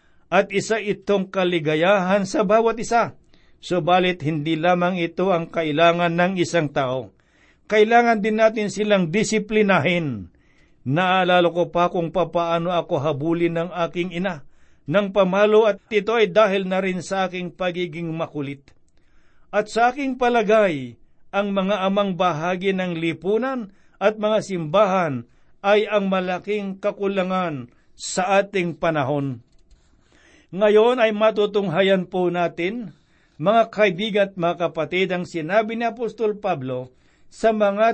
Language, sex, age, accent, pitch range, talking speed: Filipino, male, 60-79, native, 165-205 Hz, 125 wpm